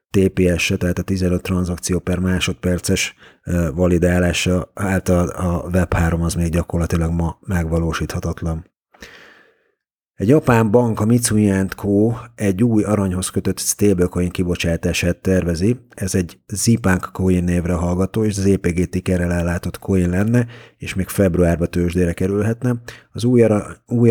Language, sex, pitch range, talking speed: Hungarian, male, 90-100 Hz, 115 wpm